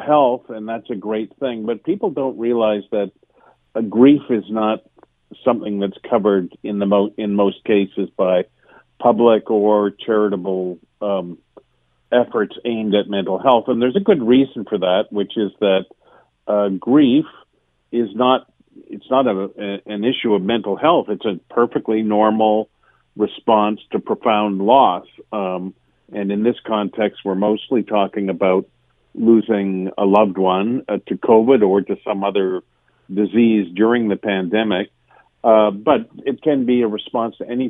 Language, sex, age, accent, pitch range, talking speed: English, male, 50-69, American, 100-115 Hz, 155 wpm